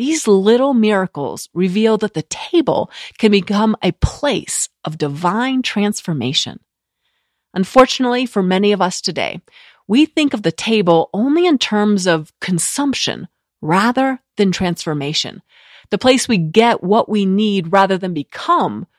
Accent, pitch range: American, 180-245 Hz